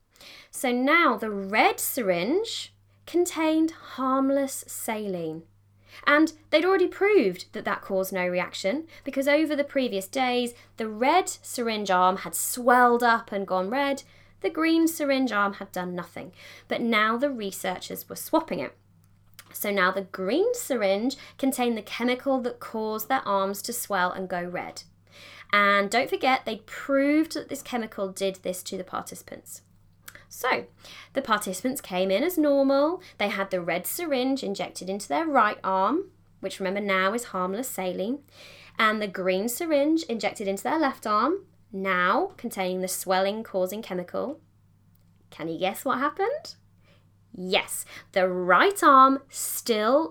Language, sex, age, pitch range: English, female, 20-39, 190-275 Hz